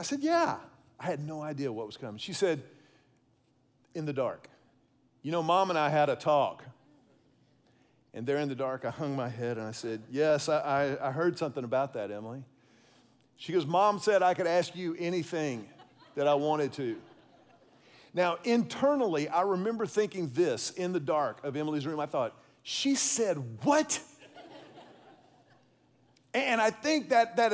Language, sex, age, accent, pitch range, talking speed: English, male, 40-59, American, 150-235 Hz, 170 wpm